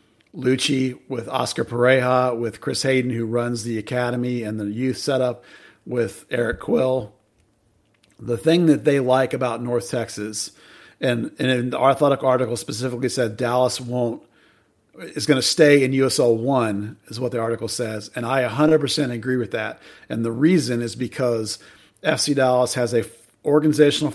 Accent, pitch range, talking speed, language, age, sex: American, 120-135 Hz, 165 wpm, English, 40-59, male